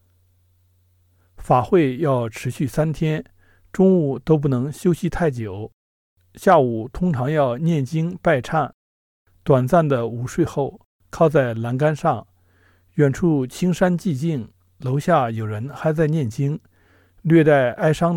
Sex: male